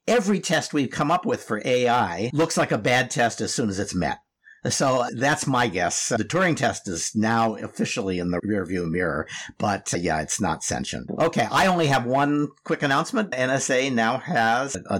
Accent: American